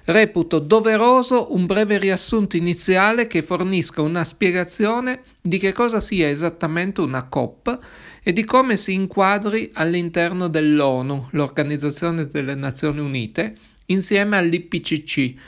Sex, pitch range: male, 150-205 Hz